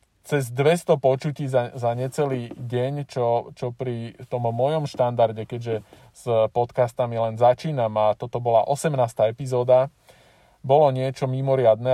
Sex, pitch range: male, 120-145 Hz